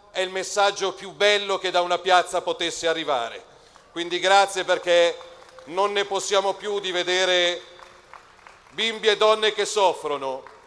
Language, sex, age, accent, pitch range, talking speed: Italian, male, 40-59, native, 195-250 Hz, 140 wpm